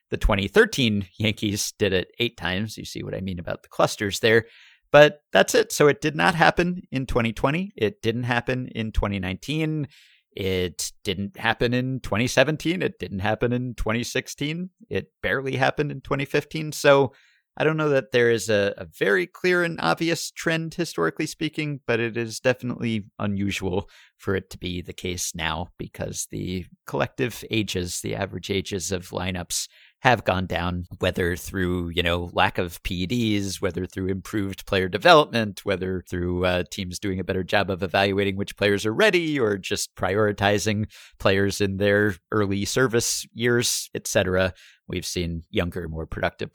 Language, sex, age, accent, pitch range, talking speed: English, male, 50-69, American, 95-125 Hz, 165 wpm